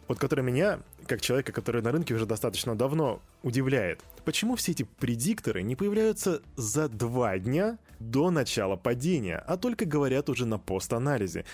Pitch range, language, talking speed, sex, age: 115-150 Hz, Russian, 155 wpm, male, 20-39